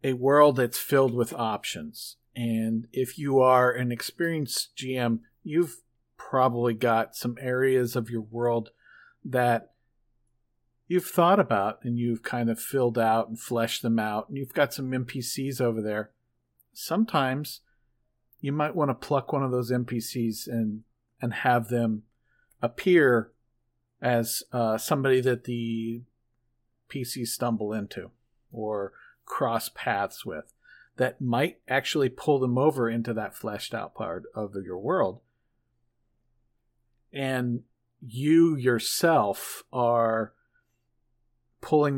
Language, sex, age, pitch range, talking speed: English, male, 50-69, 115-130 Hz, 125 wpm